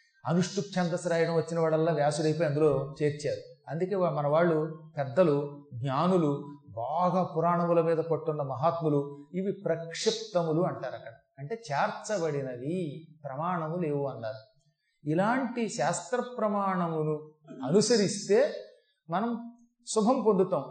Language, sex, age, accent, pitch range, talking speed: Telugu, male, 30-49, native, 150-200 Hz, 95 wpm